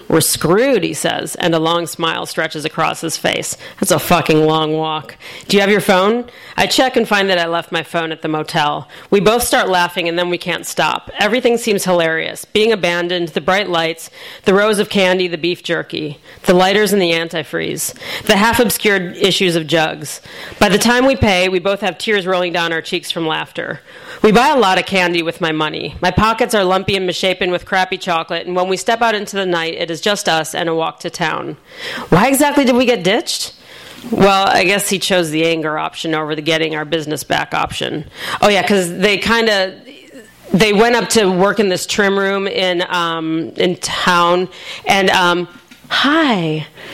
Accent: American